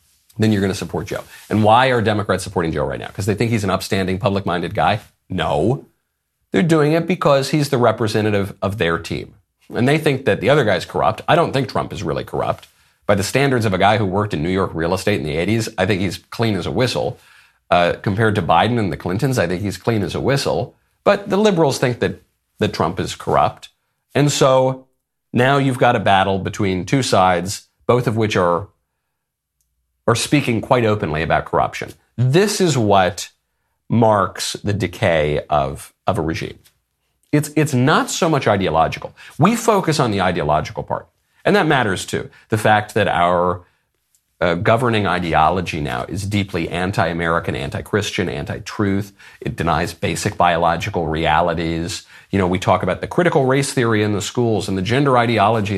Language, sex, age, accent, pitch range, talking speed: English, male, 40-59, American, 90-125 Hz, 185 wpm